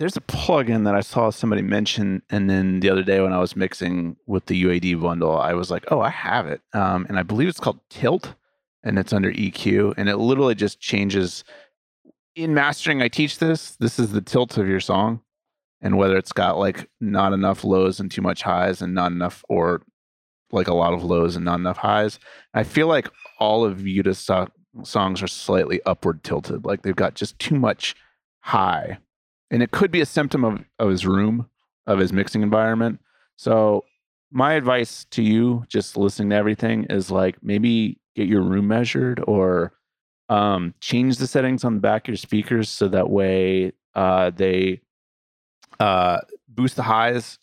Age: 30-49